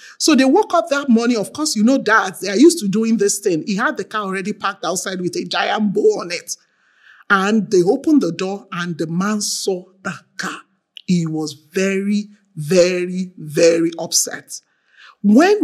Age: 50-69